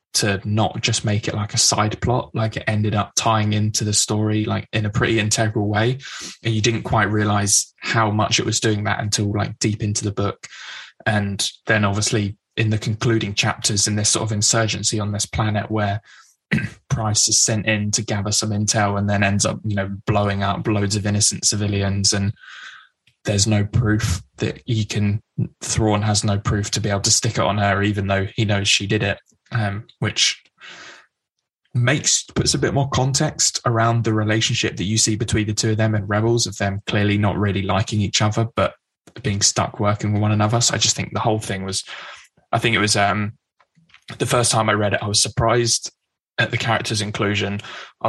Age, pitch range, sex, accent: 20-39, 100-115 Hz, male, British